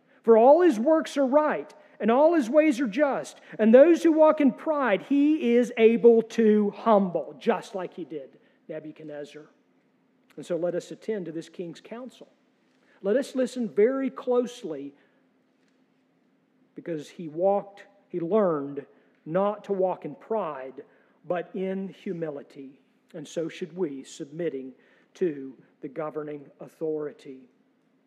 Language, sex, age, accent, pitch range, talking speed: English, male, 50-69, American, 185-265 Hz, 135 wpm